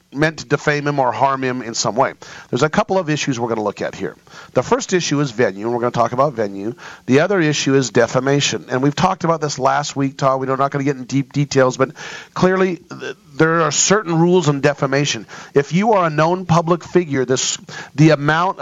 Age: 40-59